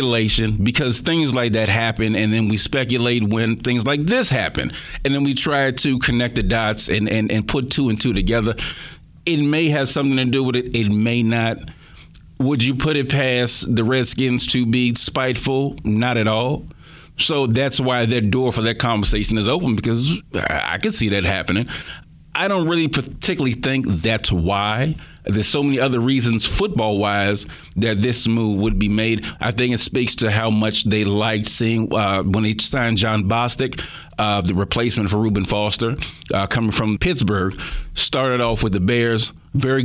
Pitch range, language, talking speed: 105-130 Hz, English, 185 wpm